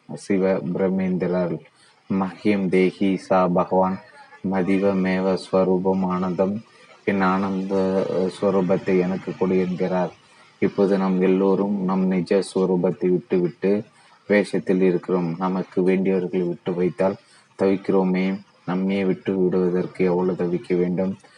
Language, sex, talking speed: Tamil, male, 90 wpm